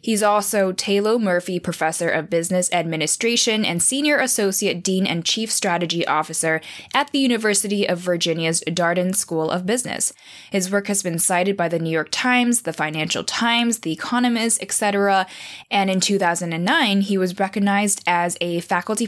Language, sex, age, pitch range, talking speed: English, female, 10-29, 170-210 Hz, 155 wpm